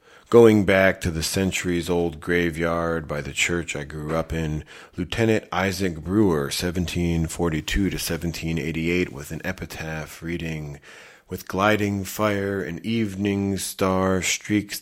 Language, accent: English, American